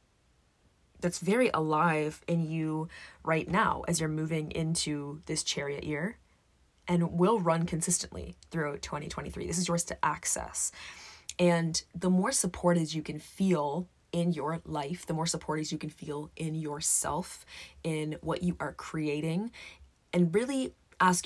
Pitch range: 150-180 Hz